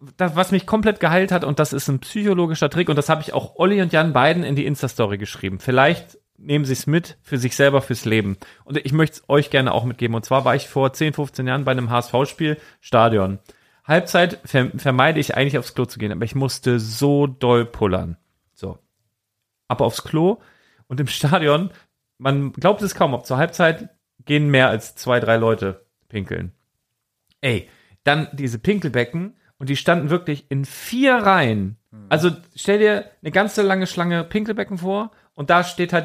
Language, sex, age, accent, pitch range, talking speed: German, male, 40-59, German, 130-180 Hz, 190 wpm